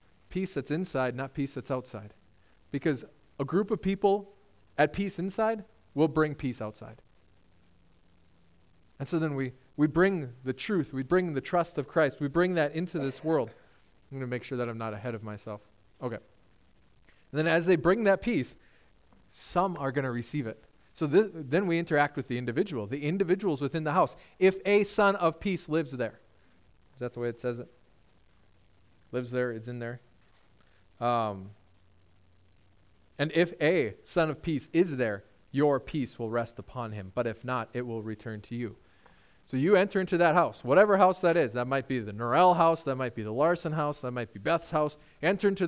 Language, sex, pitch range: English, male, 110-170 Hz